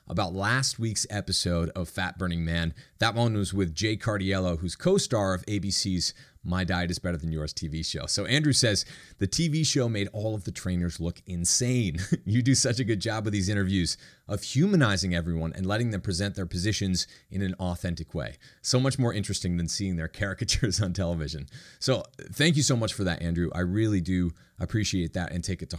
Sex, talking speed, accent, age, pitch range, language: male, 200 wpm, American, 30-49, 90-115 Hz, English